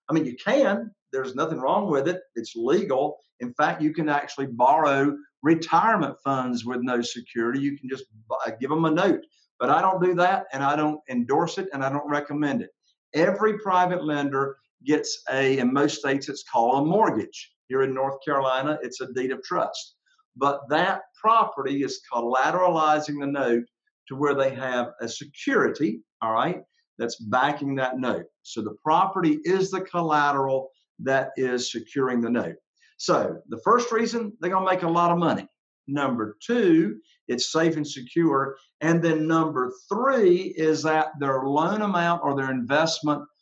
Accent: American